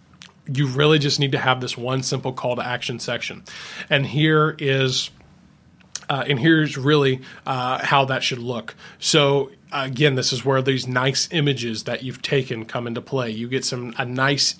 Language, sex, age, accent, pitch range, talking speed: English, male, 20-39, American, 130-155 Hz, 180 wpm